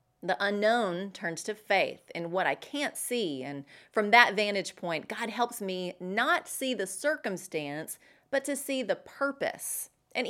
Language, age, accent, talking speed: English, 30-49, American, 165 wpm